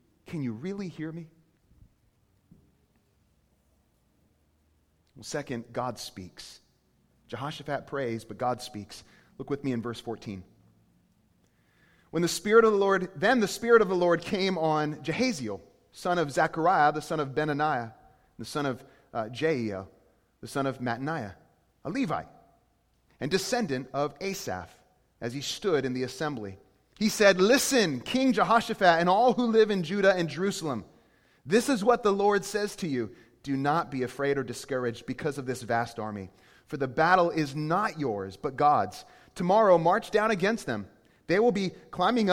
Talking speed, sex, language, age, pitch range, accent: 160 wpm, male, English, 30-49, 125-185 Hz, American